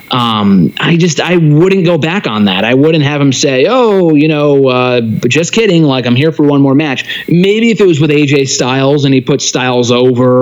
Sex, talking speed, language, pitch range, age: male, 225 wpm, English, 125-165 Hz, 30-49